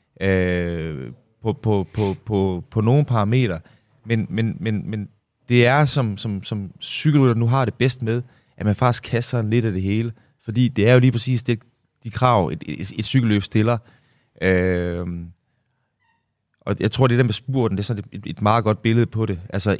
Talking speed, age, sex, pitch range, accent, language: 195 wpm, 20-39, male, 100-125 Hz, native, Danish